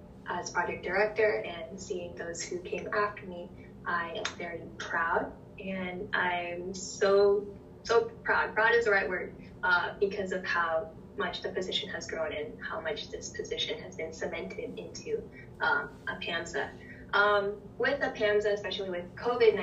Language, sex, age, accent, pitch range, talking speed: English, female, 10-29, American, 185-215 Hz, 160 wpm